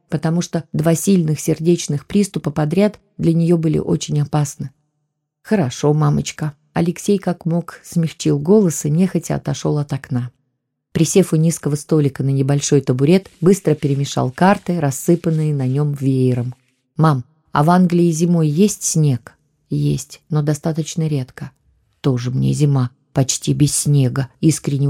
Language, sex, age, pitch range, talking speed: Russian, female, 20-39, 140-170 Hz, 135 wpm